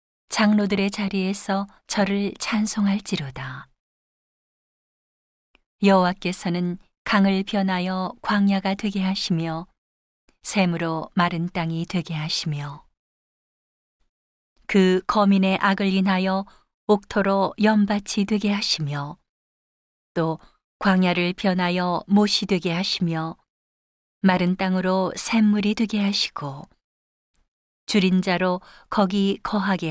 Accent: native